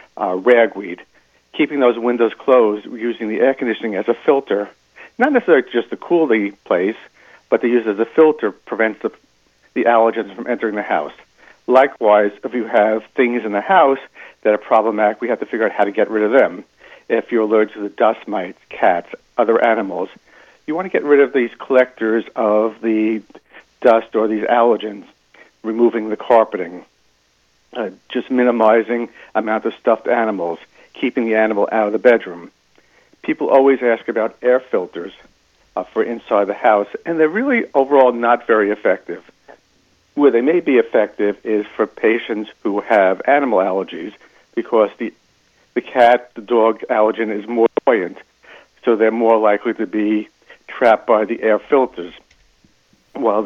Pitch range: 110-120 Hz